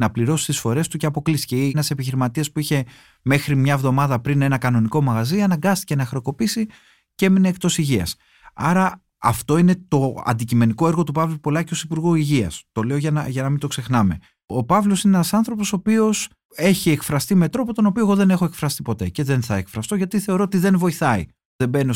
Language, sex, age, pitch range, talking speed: Greek, male, 30-49, 115-180 Hz, 210 wpm